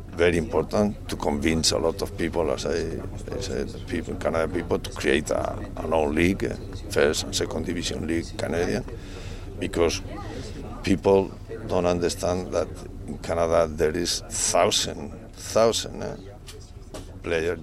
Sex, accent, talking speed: male, Spanish, 135 wpm